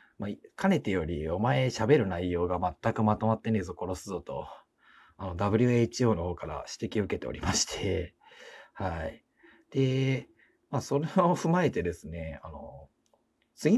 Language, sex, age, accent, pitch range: Japanese, male, 40-59, native, 85-115 Hz